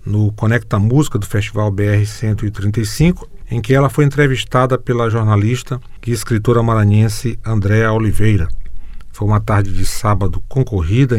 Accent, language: Brazilian, Portuguese